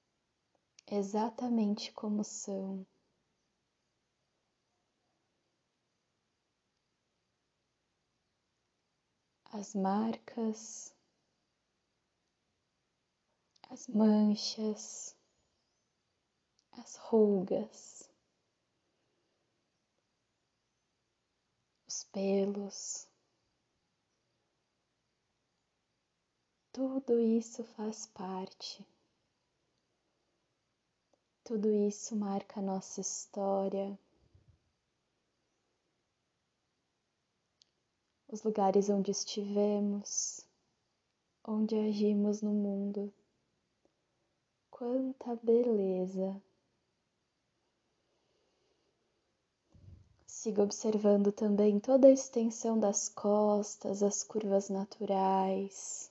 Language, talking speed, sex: Portuguese, 45 wpm, female